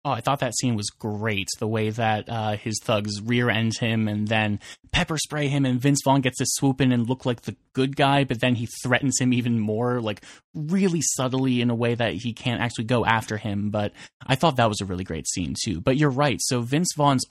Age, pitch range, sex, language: 20-39, 110-130 Hz, male, English